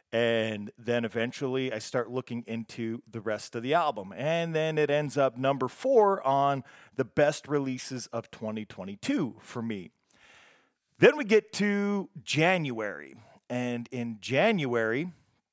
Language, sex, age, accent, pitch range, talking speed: English, male, 40-59, American, 120-155 Hz, 135 wpm